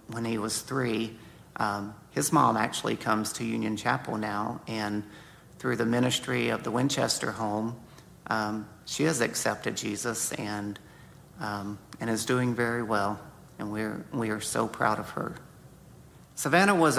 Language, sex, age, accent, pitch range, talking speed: English, male, 50-69, American, 120-145 Hz, 150 wpm